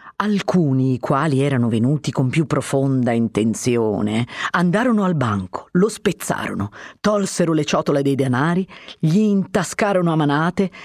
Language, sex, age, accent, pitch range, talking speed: Italian, female, 30-49, native, 140-190 Hz, 125 wpm